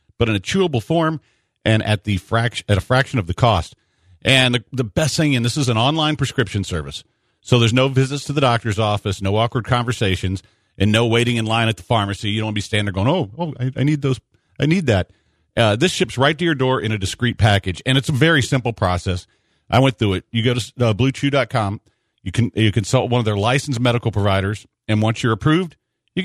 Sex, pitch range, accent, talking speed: male, 105-135 Hz, American, 240 wpm